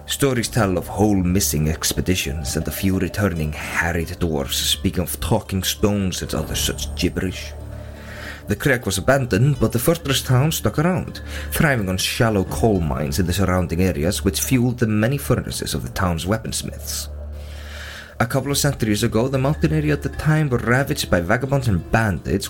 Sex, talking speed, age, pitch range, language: male, 175 wpm, 30-49, 80-110 Hz, English